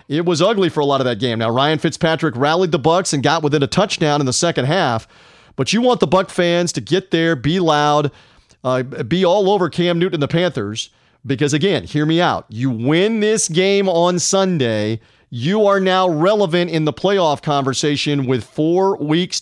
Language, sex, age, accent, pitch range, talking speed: English, male, 40-59, American, 140-185 Hz, 205 wpm